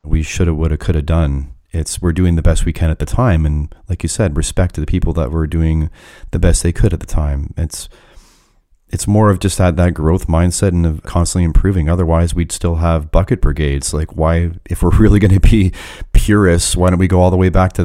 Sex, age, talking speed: male, 30-49, 245 wpm